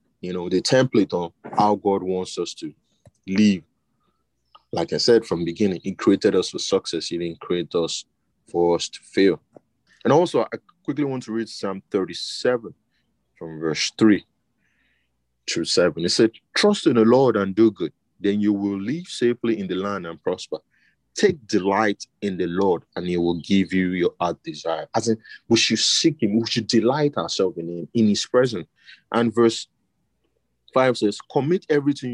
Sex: male